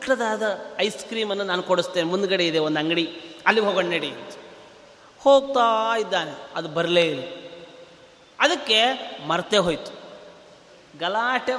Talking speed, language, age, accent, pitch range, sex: 110 wpm, Kannada, 30-49, native, 190-280 Hz, male